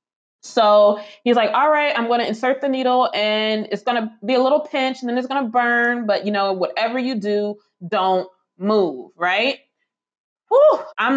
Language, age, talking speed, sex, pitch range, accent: English, 20-39, 190 wpm, female, 215-280 Hz, American